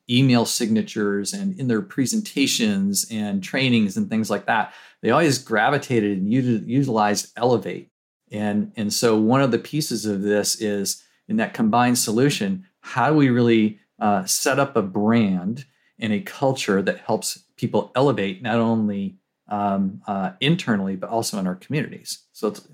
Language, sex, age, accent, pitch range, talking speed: English, male, 40-59, American, 110-145 Hz, 160 wpm